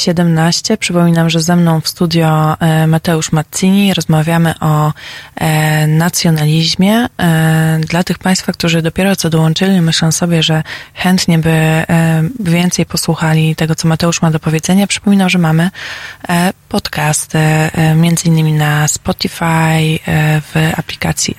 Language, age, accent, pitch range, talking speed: Polish, 20-39, native, 160-175 Hz, 135 wpm